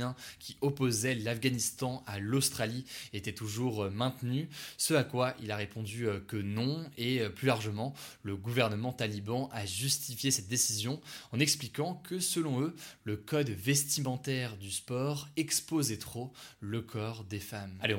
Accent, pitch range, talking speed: French, 110-140 Hz, 145 wpm